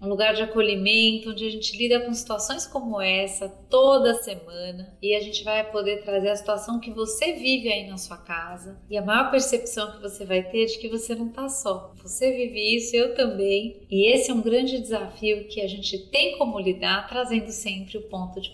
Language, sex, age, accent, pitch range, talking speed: Portuguese, female, 30-49, Brazilian, 195-235 Hz, 210 wpm